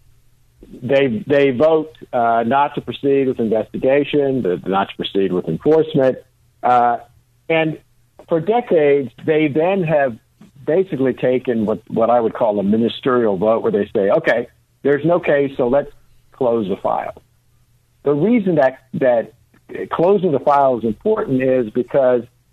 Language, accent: English, American